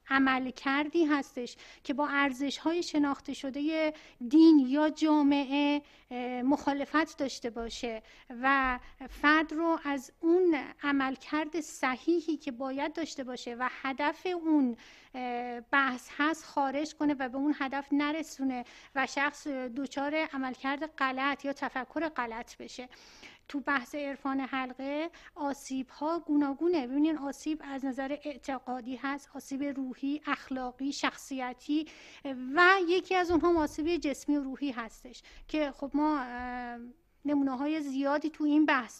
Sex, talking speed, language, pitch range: female, 125 wpm, Persian, 255-305 Hz